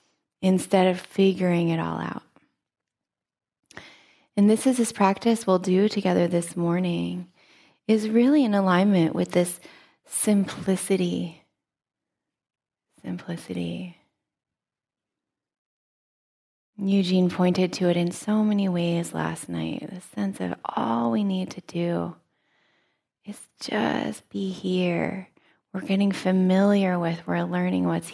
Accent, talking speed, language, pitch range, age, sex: American, 115 wpm, English, 165-200 Hz, 20-39, female